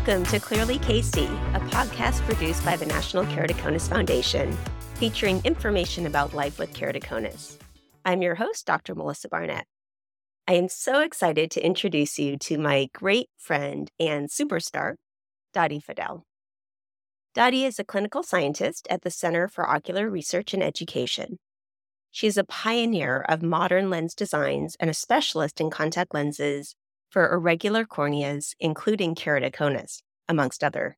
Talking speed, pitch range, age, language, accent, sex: 140 wpm, 110-180 Hz, 30-49, English, American, female